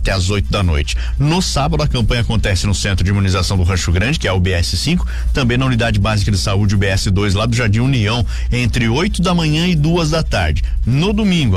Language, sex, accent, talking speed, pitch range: Portuguese, male, Brazilian, 235 wpm, 95-140 Hz